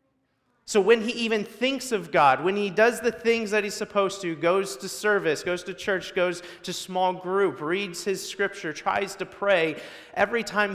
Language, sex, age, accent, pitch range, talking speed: English, male, 30-49, American, 130-185 Hz, 190 wpm